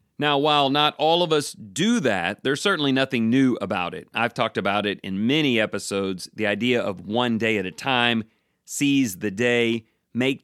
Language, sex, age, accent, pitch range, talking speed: English, male, 30-49, American, 110-140 Hz, 190 wpm